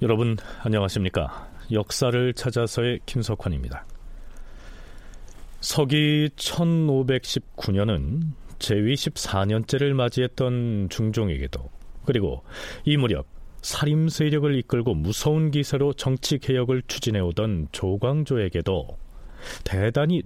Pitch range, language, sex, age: 100-145 Hz, Korean, male, 40-59